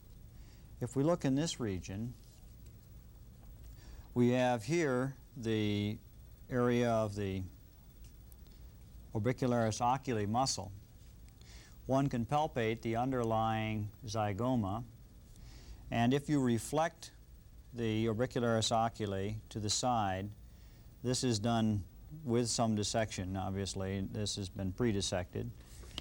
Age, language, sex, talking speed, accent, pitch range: 50-69, English, male, 100 wpm, American, 105-125 Hz